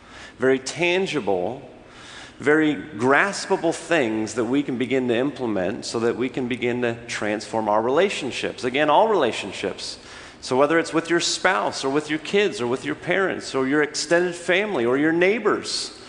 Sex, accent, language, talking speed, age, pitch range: male, American, English, 165 wpm, 40-59, 125-170 Hz